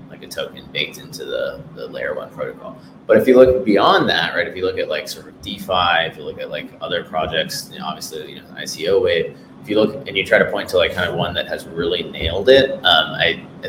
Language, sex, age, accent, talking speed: English, male, 30-49, American, 265 wpm